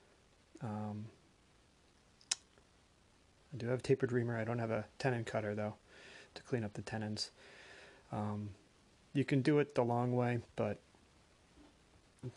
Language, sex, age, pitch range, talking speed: English, male, 30-49, 110-130 Hz, 140 wpm